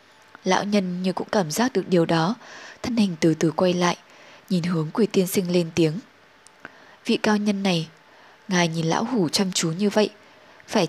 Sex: female